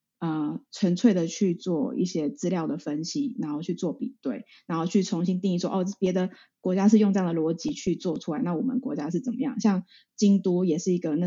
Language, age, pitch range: Chinese, 20-39, 180-240 Hz